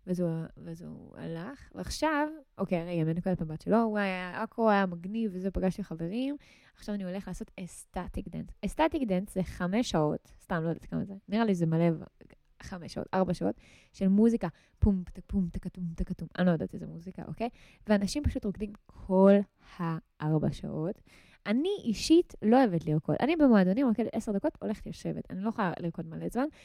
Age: 20-39